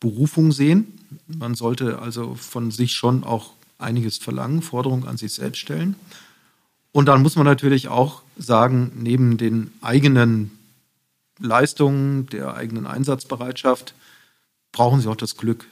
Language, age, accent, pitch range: German, 40-59, German, 115-135 Hz